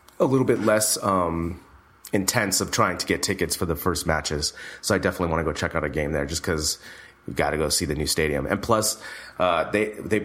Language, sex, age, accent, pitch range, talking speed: English, male, 30-49, American, 90-100 Hz, 240 wpm